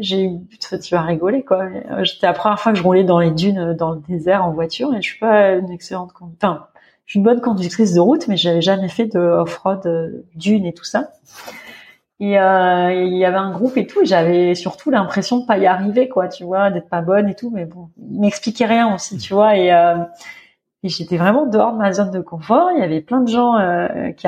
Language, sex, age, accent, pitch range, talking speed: French, female, 30-49, French, 175-230 Hz, 240 wpm